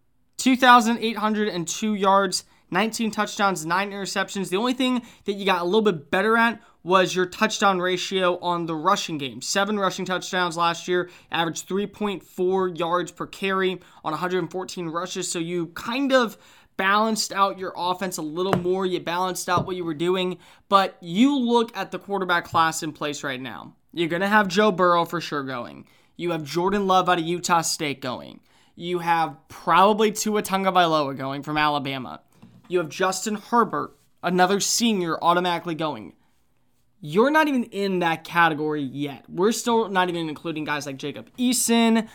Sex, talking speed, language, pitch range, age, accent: male, 170 wpm, English, 165-200 Hz, 20-39, American